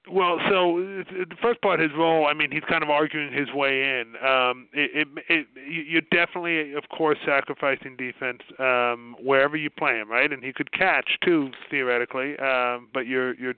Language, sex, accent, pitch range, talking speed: English, male, American, 130-165 Hz, 185 wpm